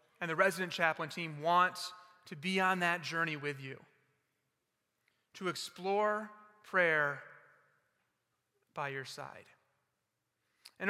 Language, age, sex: English, 30-49, male